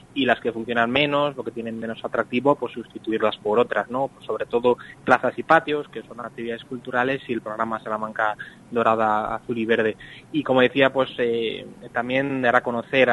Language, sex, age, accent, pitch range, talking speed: Spanish, male, 20-39, Spanish, 115-125 Hz, 190 wpm